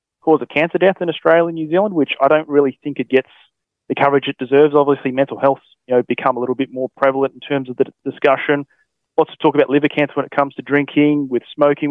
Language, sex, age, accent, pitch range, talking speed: English, male, 20-39, Australian, 125-150 Hz, 245 wpm